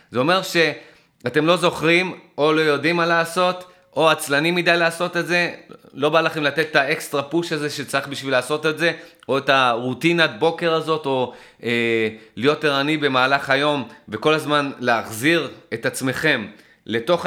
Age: 30-49